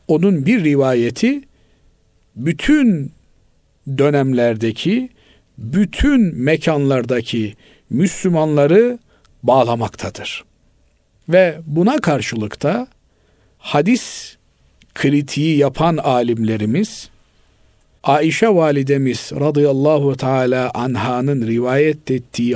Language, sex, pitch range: Turkish, male, 125-170 Hz